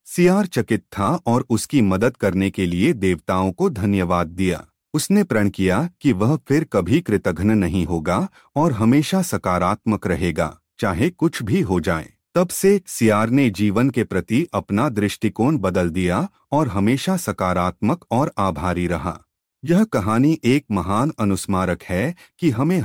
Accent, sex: native, male